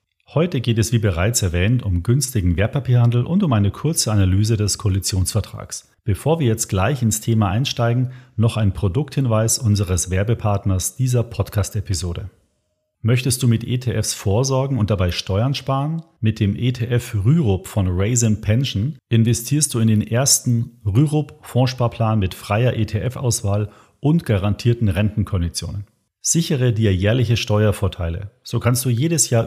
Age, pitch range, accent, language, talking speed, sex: 40-59, 105-130 Hz, German, German, 135 wpm, male